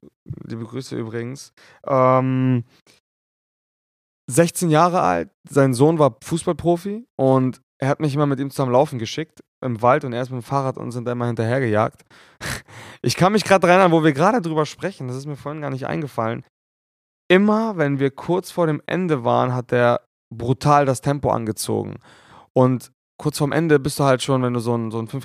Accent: German